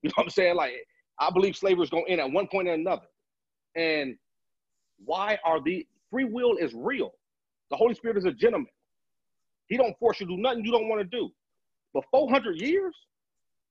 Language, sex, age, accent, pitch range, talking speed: English, male, 40-59, American, 195-280 Hz, 205 wpm